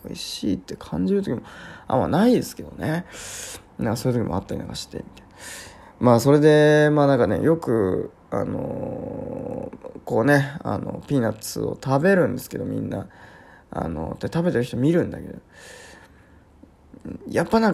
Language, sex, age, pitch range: Japanese, male, 20-39, 100-165 Hz